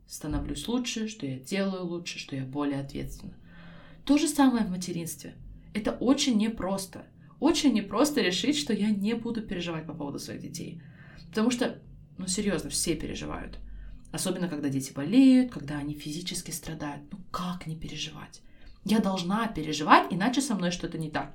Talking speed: 160 wpm